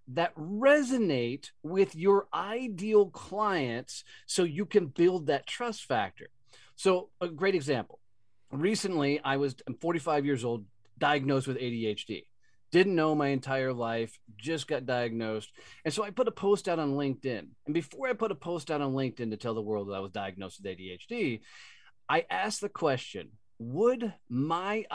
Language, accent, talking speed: English, American, 165 wpm